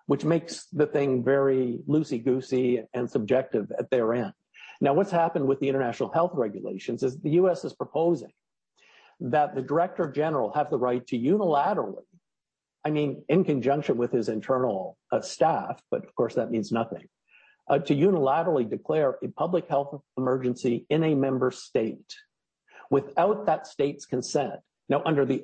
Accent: American